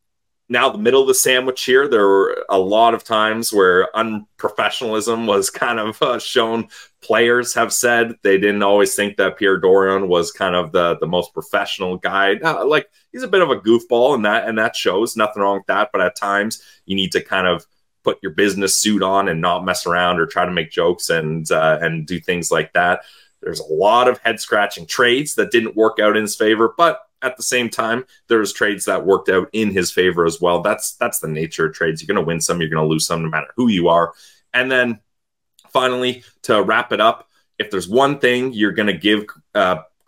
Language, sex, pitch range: English, male, 90-115 Hz